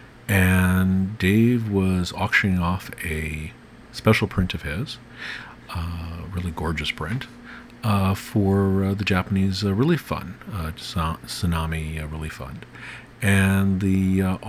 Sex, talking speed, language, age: male, 120 wpm, English, 50-69